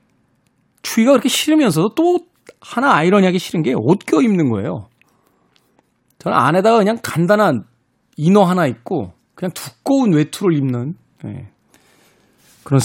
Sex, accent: male, native